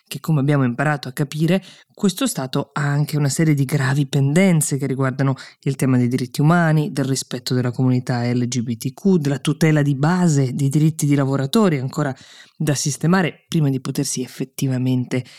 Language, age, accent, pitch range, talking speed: Italian, 20-39, native, 130-170 Hz, 165 wpm